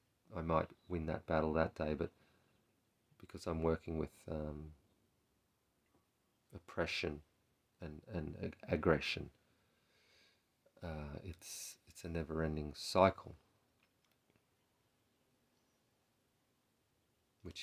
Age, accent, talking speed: 40-59, Australian, 85 wpm